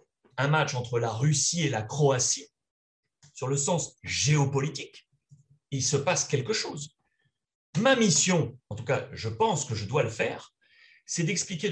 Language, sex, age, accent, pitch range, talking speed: French, male, 30-49, French, 130-165 Hz, 160 wpm